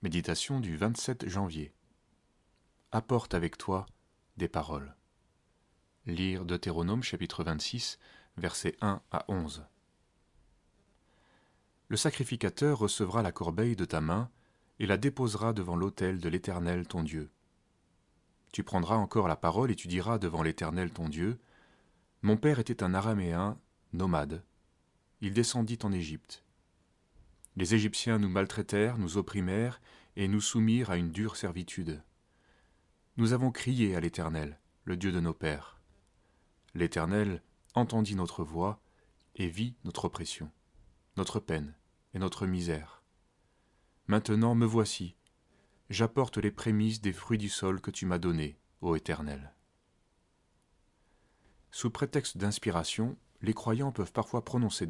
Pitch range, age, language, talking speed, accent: 85-110 Hz, 30-49, French, 125 wpm, French